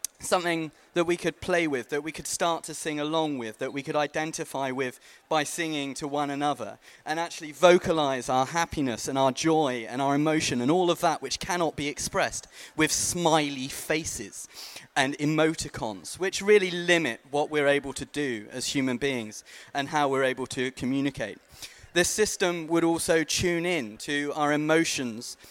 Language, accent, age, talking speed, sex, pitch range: English, British, 30-49, 175 wpm, male, 135-165 Hz